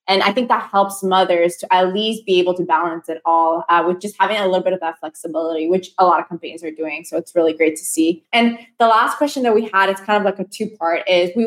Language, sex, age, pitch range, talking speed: English, female, 20-39, 180-205 Hz, 275 wpm